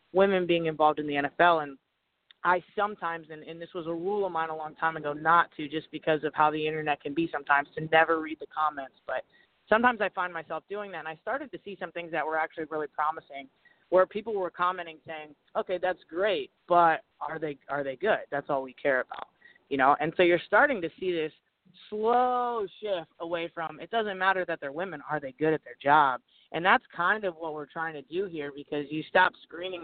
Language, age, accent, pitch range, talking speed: English, 30-49, American, 150-175 Hz, 225 wpm